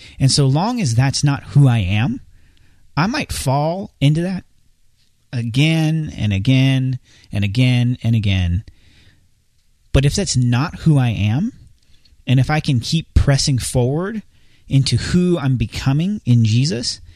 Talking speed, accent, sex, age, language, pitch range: 145 wpm, American, male, 30-49, English, 110-145 Hz